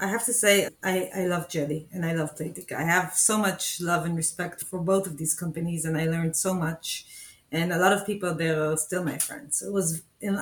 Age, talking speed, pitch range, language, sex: 30-49, 250 wpm, 165-190 Hz, English, female